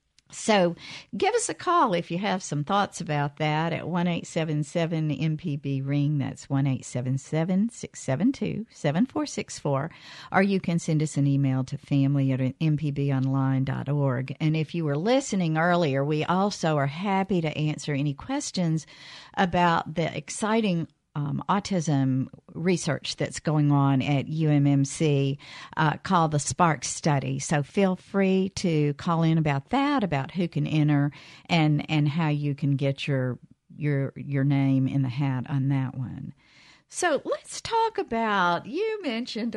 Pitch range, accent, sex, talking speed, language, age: 140-180 Hz, American, female, 160 wpm, English, 50-69